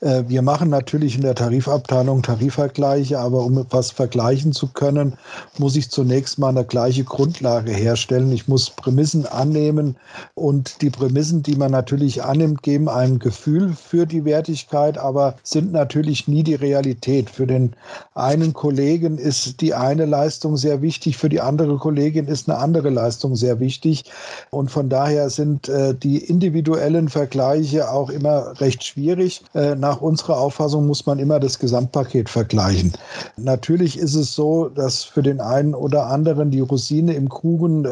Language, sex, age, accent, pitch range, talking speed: German, male, 50-69, German, 130-150 Hz, 155 wpm